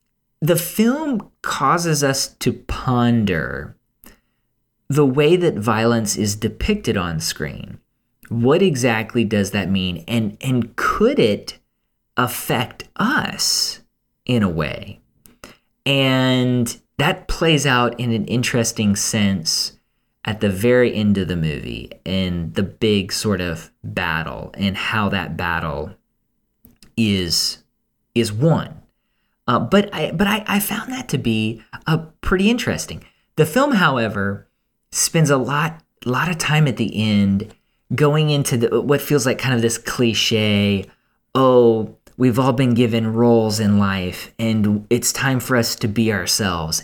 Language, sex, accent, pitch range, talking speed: English, male, American, 105-135 Hz, 140 wpm